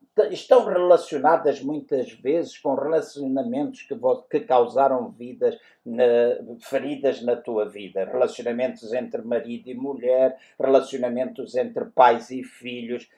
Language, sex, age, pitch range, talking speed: Portuguese, male, 50-69, 125-205 Hz, 120 wpm